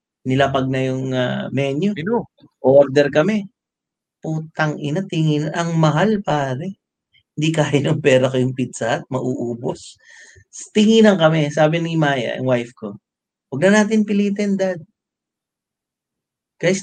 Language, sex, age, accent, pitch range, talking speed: English, male, 30-49, Filipino, 145-215 Hz, 130 wpm